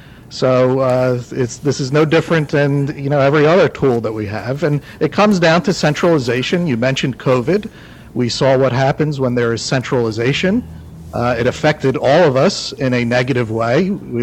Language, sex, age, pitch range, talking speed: English, male, 50-69, 125-165 Hz, 185 wpm